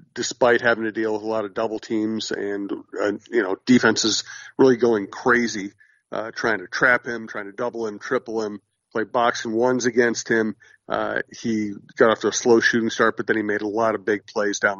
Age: 50-69